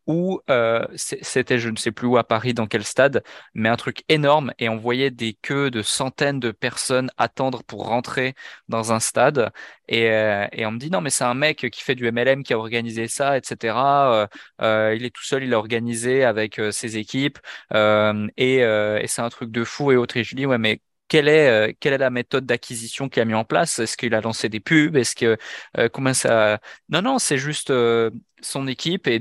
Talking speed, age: 230 wpm, 20-39